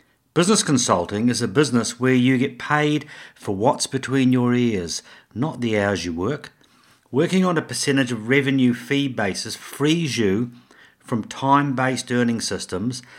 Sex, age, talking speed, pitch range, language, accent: male, 50-69, 150 wpm, 110-135 Hz, English, British